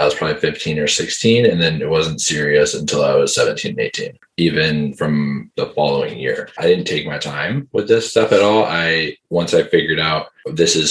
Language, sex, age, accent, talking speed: English, male, 20-39, American, 210 wpm